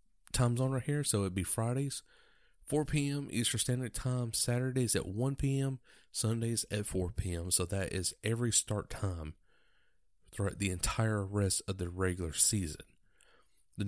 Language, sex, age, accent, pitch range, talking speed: English, male, 30-49, American, 95-120 Hz, 155 wpm